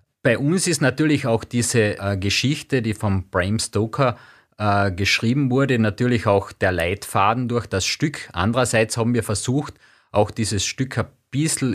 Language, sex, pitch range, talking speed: German, male, 105-130 Hz, 155 wpm